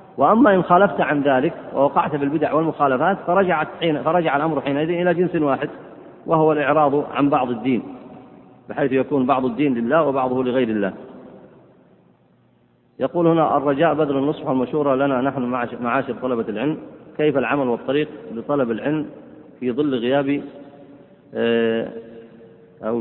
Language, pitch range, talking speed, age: Arabic, 120-145 Hz, 130 wpm, 40-59